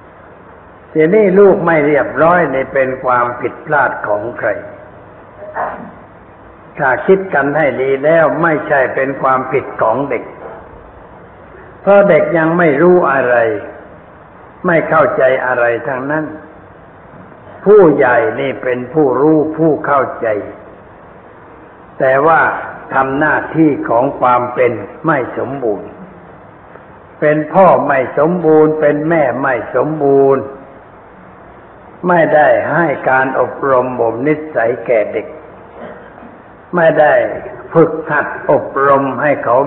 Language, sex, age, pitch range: Thai, male, 60-79, 130-160 Hz